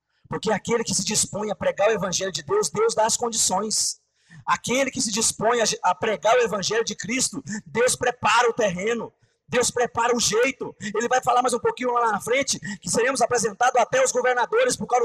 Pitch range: 160-245 Hz